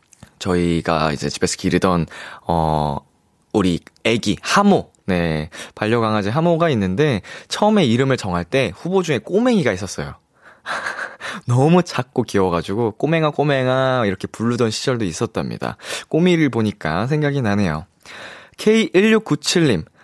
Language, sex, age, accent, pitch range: Korean, male, 20-39, native, 100-165 Hz